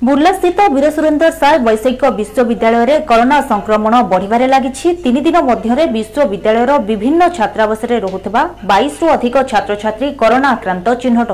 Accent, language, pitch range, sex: native, Hindi, 220-295 Hz, female